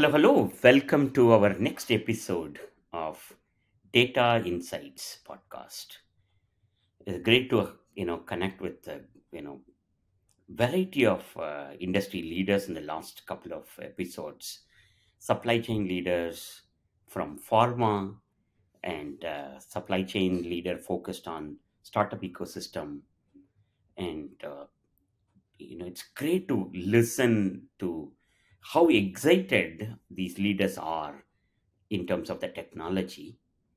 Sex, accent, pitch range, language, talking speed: male, Indian, 90-110 Hz, English, 115 wpm